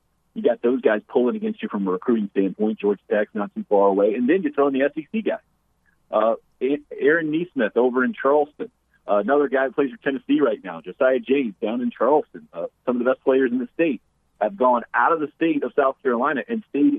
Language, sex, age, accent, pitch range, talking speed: English, male, 40-59, American, 110-155 Hz, 230 wpm